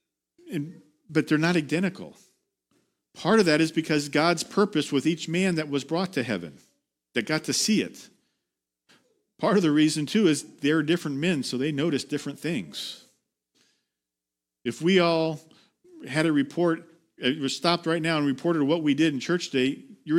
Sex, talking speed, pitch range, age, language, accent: male, 175 wpm, 115-165 Hz, 50-69, English, American